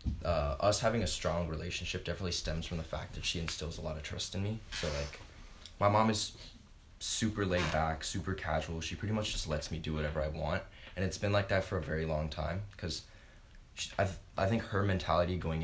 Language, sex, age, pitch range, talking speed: English, male, 20-39, 80-95 Hz, 220 wpm